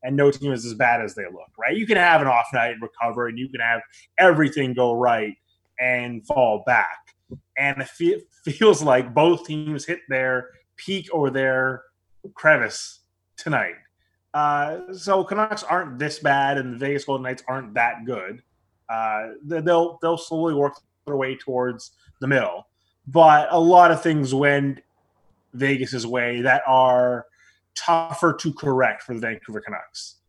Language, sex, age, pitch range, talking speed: English, male, 20-39, 110-145 Hz, 160 wpm